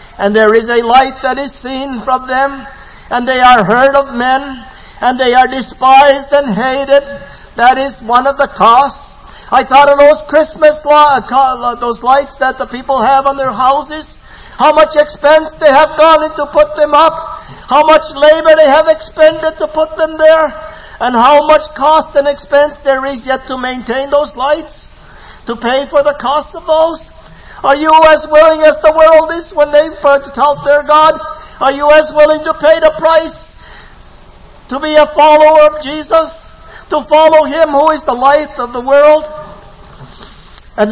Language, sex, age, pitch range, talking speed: English, male, 50-69, 220-305 Hz, 180 wpm